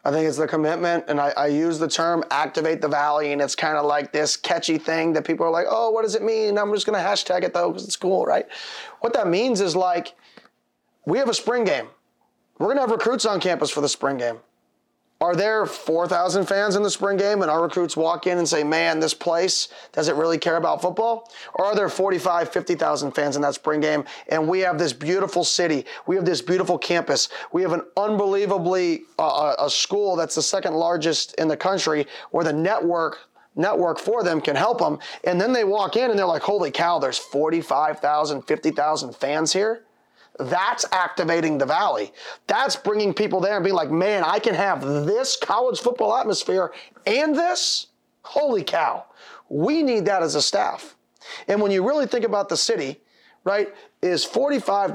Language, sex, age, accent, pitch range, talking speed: English, male, 30-49, American, 155-205 Hz, 200 wpm